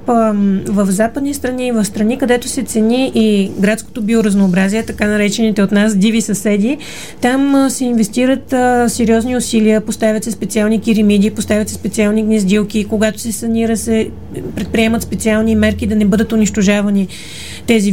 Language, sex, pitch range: Bulgarian, female, 205-235 Hz